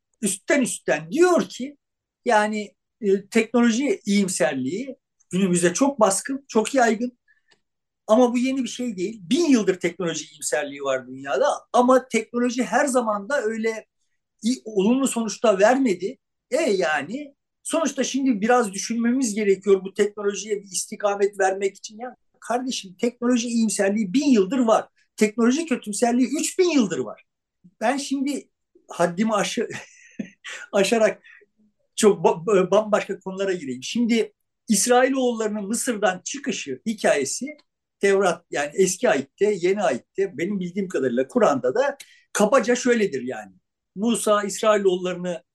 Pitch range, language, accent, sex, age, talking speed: 195-245 Hz, Turkish, native, male, 50-69, 120 wpm